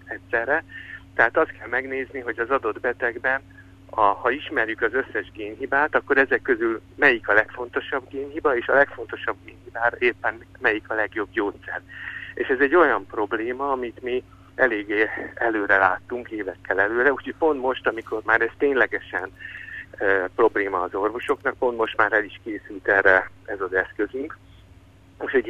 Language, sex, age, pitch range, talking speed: Hungarian, male, 60-79, 95-130 Hz, 155 wpm